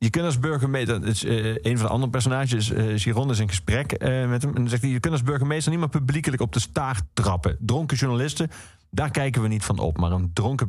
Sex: male